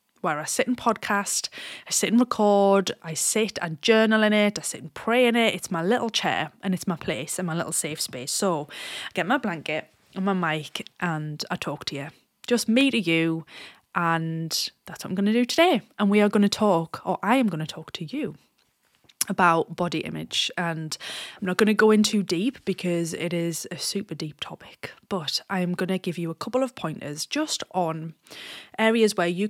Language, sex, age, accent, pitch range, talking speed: English, female, 20-39, British, 170-215 Hz, 220 wpm